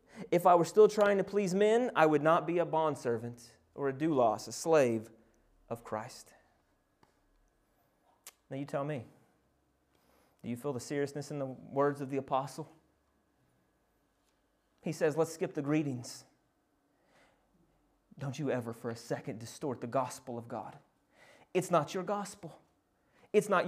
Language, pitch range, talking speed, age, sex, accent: English, 130-210 Hz, 150 wpm, 30-49, male, American